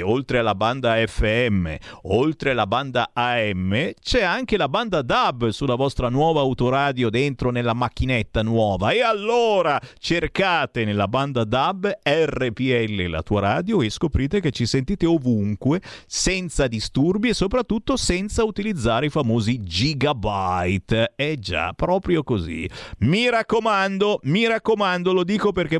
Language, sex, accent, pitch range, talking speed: Italian, male, native, 115-185 Hz, 135 wpm